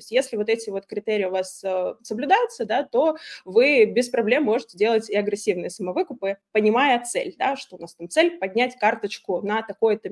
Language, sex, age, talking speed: Russian, female, 20-39, 180 wpm